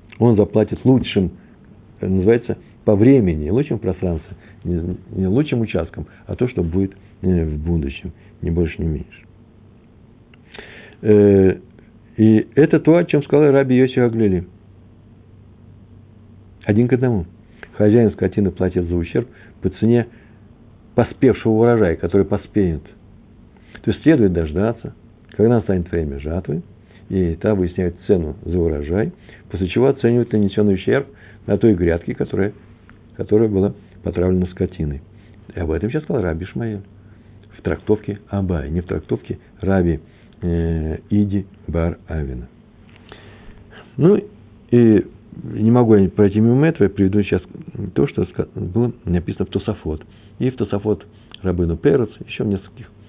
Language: Russian